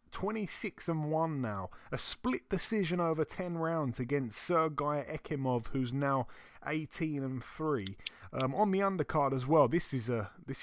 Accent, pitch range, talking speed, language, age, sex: British, 125-160 Hz, 160 wpm, English, 30-49, male